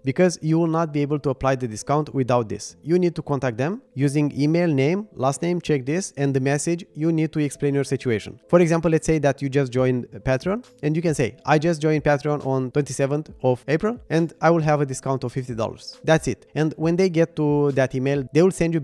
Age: 20-39